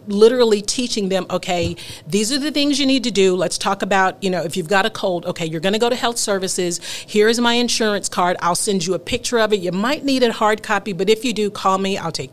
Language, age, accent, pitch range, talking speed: English, 40-59, American, 180-220 Hz, 270 wpm